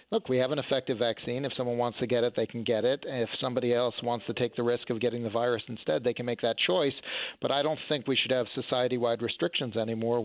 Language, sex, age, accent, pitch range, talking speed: English, male, 40-59, American, 120-130 Hz, 260 wpm